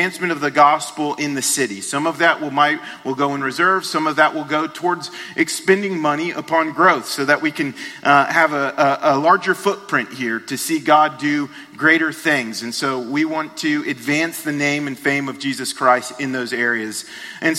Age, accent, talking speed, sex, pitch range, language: 40-59, American, 200 wpm, male, 135-165 Hz, English